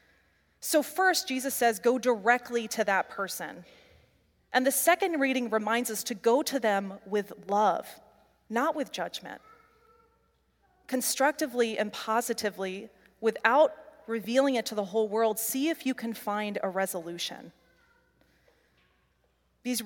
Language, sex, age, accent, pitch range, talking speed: English, female, 30-49, American, 205-260 Hz, 125 wpm